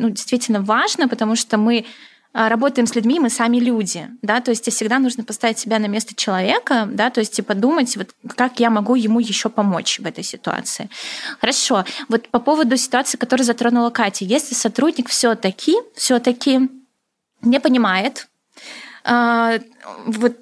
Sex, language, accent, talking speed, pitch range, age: female, Russian, native, 155 wpm, 220-255 Hz, 20-39